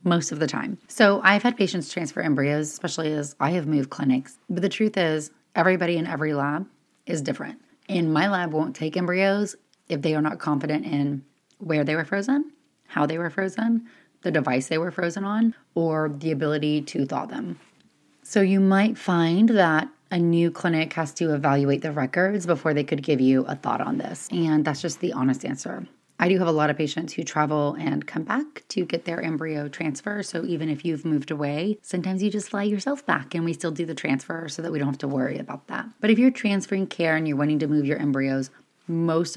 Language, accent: English, American